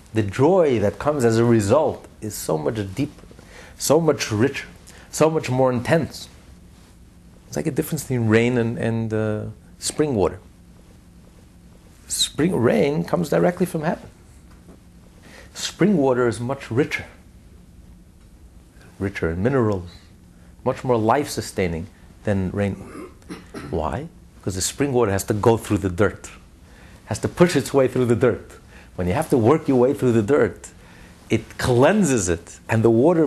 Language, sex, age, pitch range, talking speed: English, male, 60-79, 90-125 Hz, 150 wpm